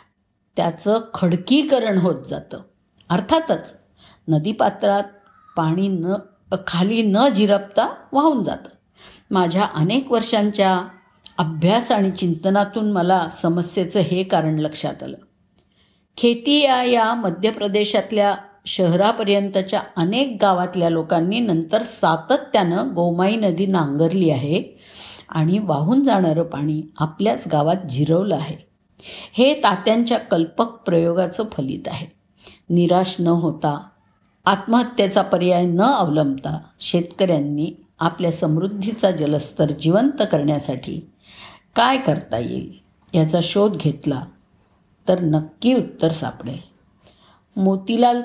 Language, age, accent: Marathi, 50-69, native